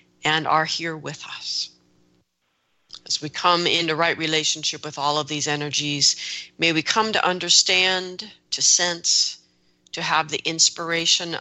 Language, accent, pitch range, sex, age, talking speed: English, American, 140-185 Hz, female, 40-59, 140 wpm